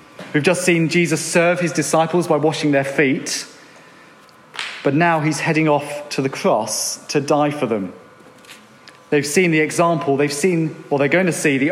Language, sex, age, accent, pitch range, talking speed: English, male, 40-59, British, 145-180 Hz, 180 wpm